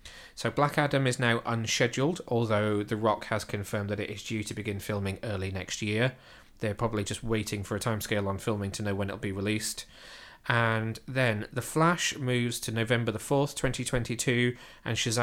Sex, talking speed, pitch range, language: male, 180 wpm, 110-130 Hz, English